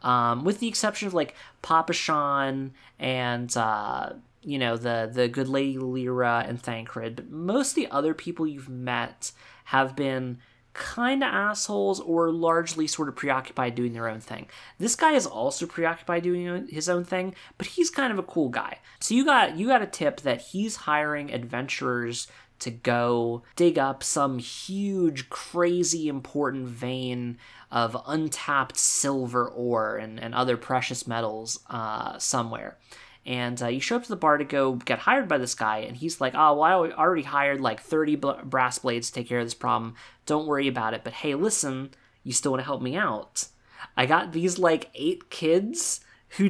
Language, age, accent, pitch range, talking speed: English, 20-39, American, 125-170 Hz, 180 wpm